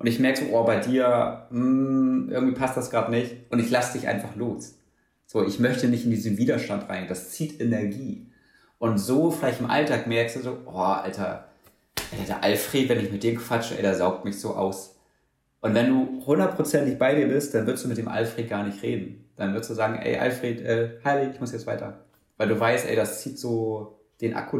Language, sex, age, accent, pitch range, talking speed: German, male, 30-49, German, 115-135 Hz, 215 wpm